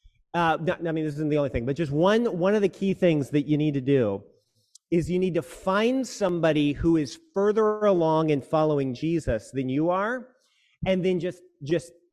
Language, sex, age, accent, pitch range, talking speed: English, male, 40-59, American, 135-190 Hz, 205 wpm